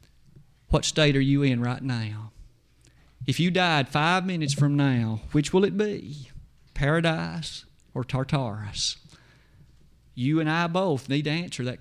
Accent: American